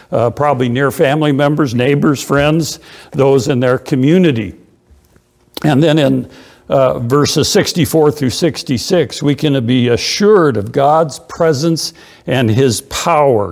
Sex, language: male, English